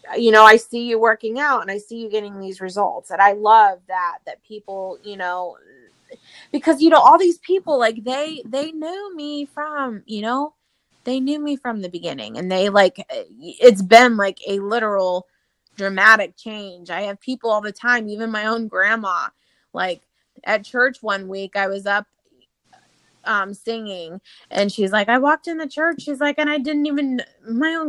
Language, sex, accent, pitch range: English, female, American, 195-270 Hz